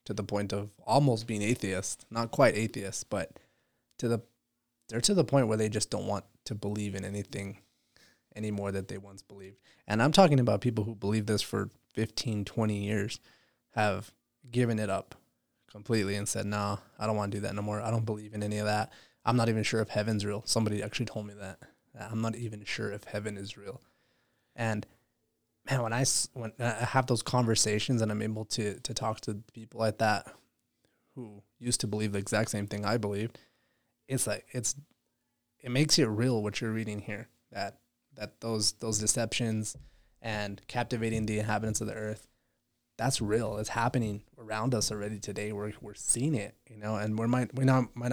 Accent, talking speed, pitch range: American, 195 wpm, 105-120 Hz